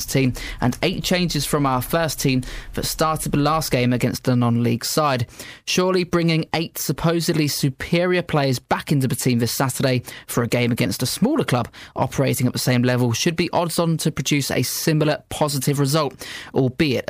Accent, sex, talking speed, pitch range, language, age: British, male, 180 wpm, 125-160 Hz, English, 20-39